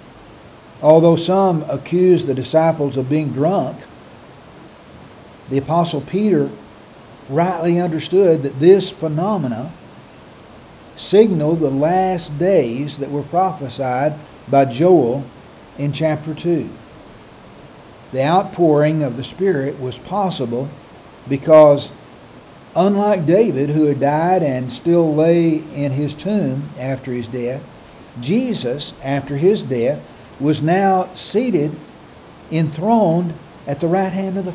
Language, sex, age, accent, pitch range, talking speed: English, male, 60-79, American, 140-180 Hz, 110 wpm